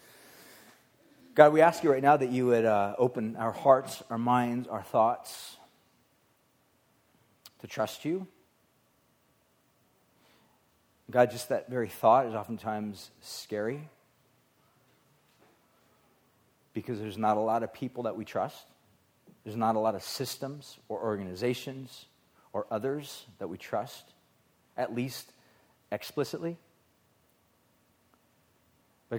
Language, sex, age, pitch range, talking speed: English, male, 40-59, 110-130 Hz, 115 wpm